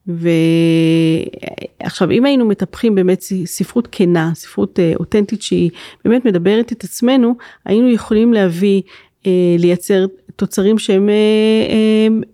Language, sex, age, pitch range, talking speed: Hebrew, female, 30-49, 180-230 Hz, 115 wpm